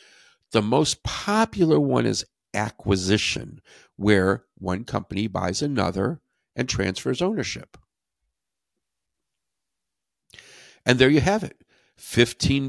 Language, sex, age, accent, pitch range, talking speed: English, male, 60-79, American, 100-155 Hz, 95 wpm